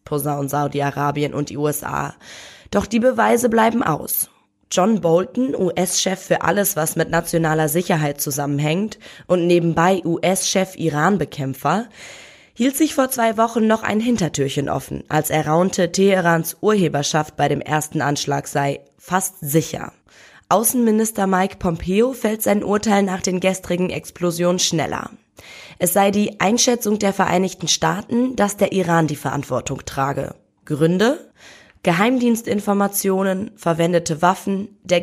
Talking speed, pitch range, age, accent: 125 wpm, 155-205 Hz, 20-39, German